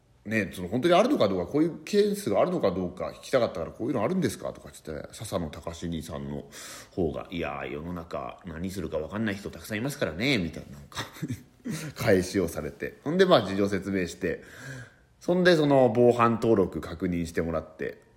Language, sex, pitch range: Japanese, male, 85-120 Hz